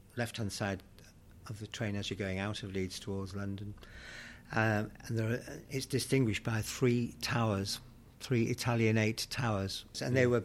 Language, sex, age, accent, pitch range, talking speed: English, male, 60-79, British, 100-115 Hz, 160 wpm